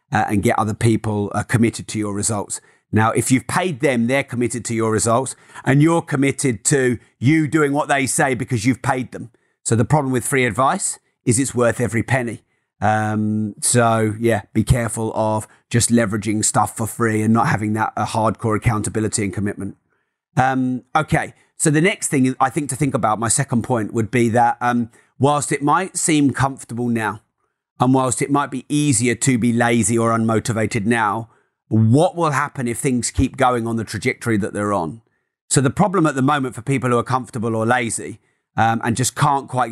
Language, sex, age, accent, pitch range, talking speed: English, male, 30-49, British, 115-140 Hz, 200 wpm